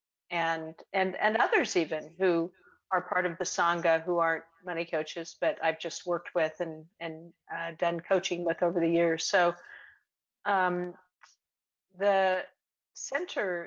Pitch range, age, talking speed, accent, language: 170-195 Hz, 50-69, 145 wpm, American, English